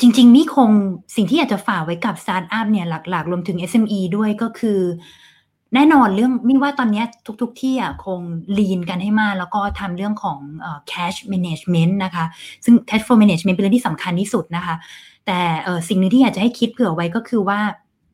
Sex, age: female, 20-39